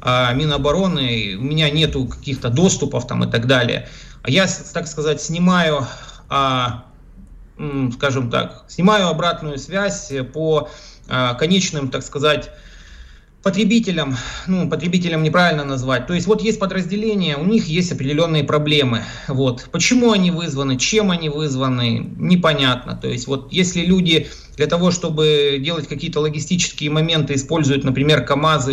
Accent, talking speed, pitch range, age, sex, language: native, 125 wpm, 135-165 Hz, 30-49, male, Russian